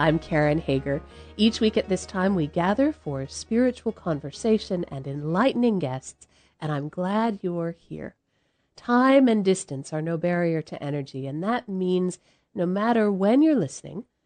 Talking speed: 155 wpm